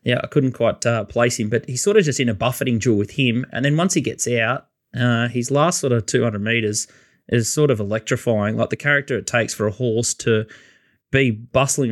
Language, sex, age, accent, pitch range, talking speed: English, male, 20-39, Australian, 110-125 Hz, 230 wpm